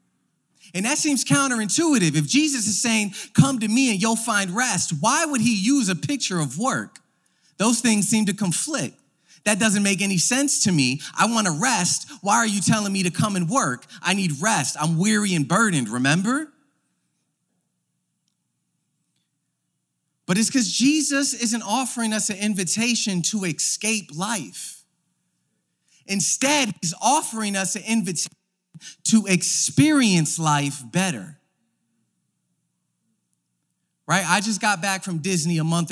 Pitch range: 155-210 Hz